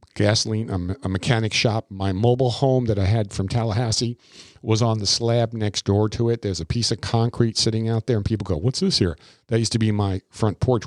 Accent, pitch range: American, 95-120 Hz